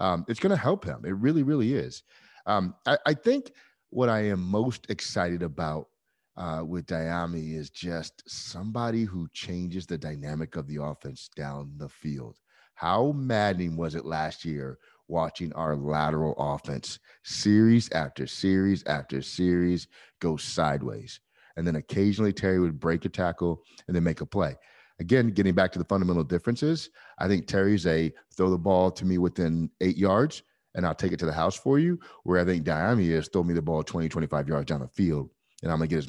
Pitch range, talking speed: 80-105 Hz, 190 wpm